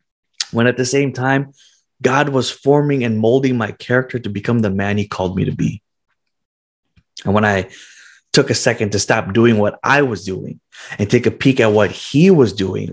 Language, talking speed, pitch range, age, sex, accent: English, 200 wpm, 105-125 Hz, 20-39, male, American